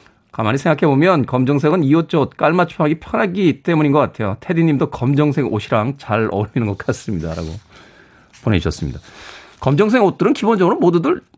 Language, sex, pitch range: Korean, male, 110-170 Hz